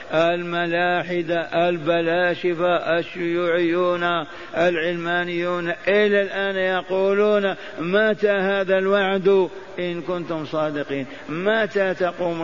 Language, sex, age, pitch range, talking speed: Arabic, male, 50-69, 155-185 Hz, 70 wpm